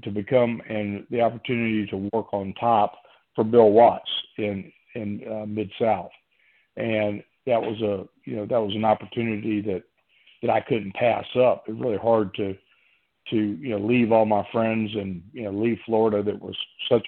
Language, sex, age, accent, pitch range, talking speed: English, male, 50-69, American, 105-120 Hz, 185 wpm